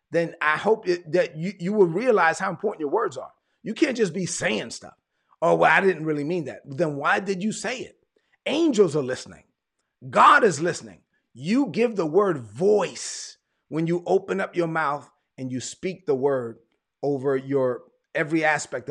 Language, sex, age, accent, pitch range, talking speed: English, male, 40-59, American, 145-195 Hz, 185 wpm